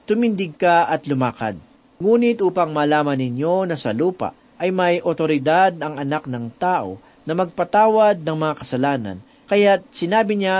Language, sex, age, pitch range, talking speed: Filipino, male, 40-59, 145-195 Hz, 145 wpm